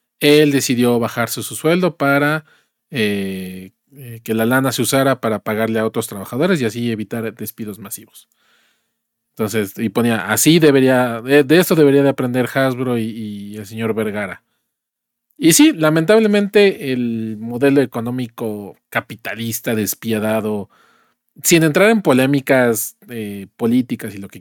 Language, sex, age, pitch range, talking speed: Spanish, male, 40-59, 115-150 Hz, 140 wpm